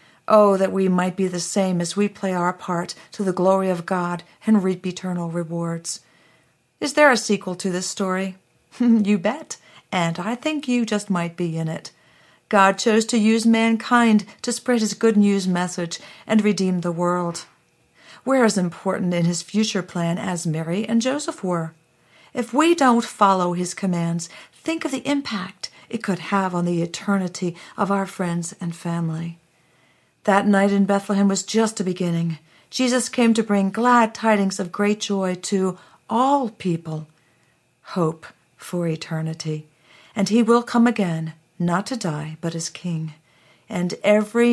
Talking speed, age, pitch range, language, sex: 165 wpm, 50-69, 170-210 Hz, English, female